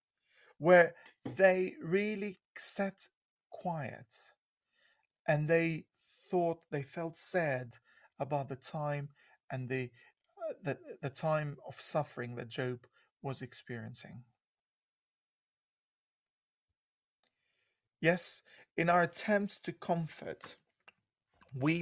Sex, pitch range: male, 140-190 Hz